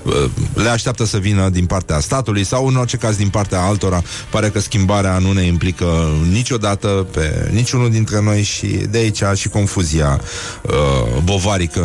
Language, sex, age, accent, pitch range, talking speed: Romanian, male, 30-49, native, 90-115 Hz, 160 wpm